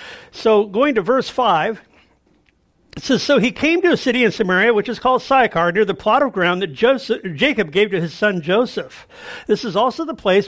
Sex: male